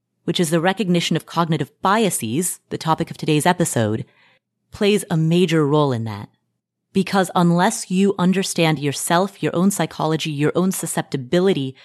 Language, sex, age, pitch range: English, female, 30-49, 140-180 Hz